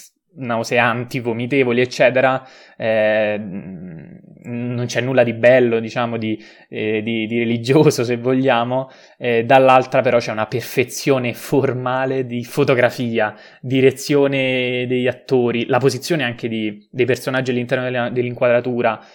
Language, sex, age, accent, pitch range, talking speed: Italian, male, 20-39, native, 110-135 Hz, 110 wpm